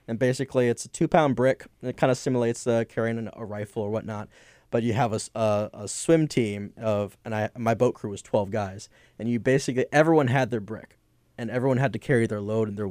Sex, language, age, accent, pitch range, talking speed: male, English, 20-39, American, 110-135 Hz, 240 wpm